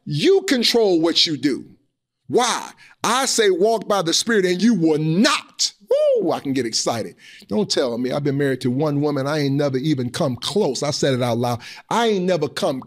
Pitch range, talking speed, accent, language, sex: 140-205 Hz, 210 wpm, American, English, male